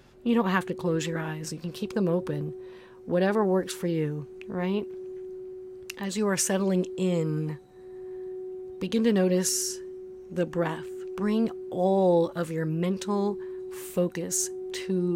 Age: 40-59